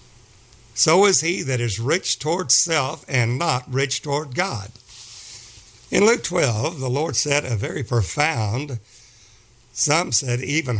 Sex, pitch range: male, 115-135 Hz